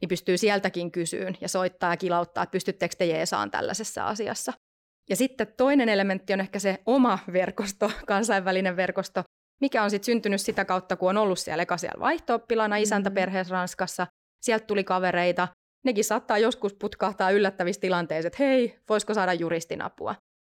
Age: 30-49